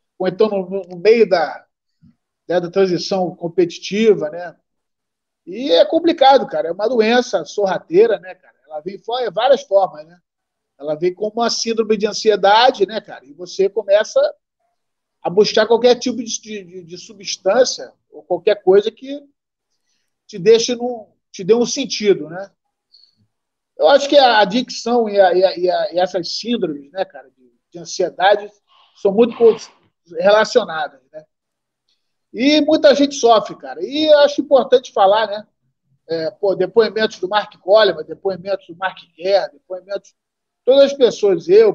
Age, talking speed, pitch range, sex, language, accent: 40-59, 150 wpm, 190-250 Hz, male, Portuguese, Brazilian